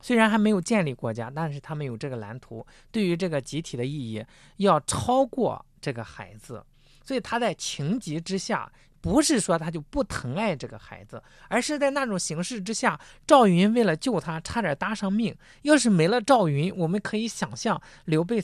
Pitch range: 135-215 Hz